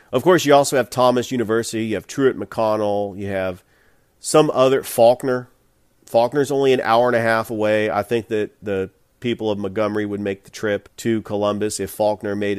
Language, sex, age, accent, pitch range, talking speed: English, male, 40-59, American, 100-130 Hz, 190 wpm